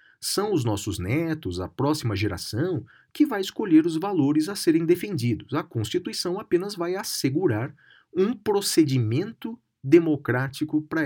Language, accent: Portuguese, Brazilian